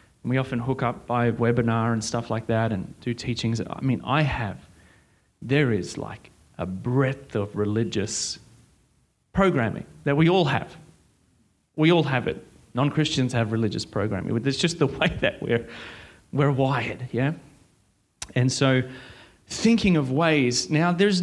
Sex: male